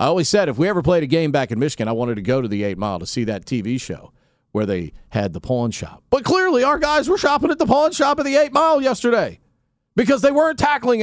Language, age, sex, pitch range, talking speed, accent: English, 40-59, male, 160-245 Hz, 270 wpm, American